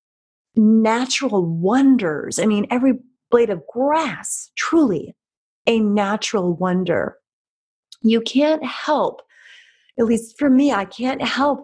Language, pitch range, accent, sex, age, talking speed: English, 205-295 Hz, American, female, 30-49, 115 wpm